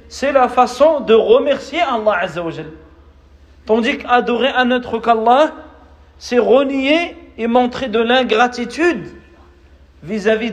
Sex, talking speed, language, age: male, 120 wpm, Malay, 40-59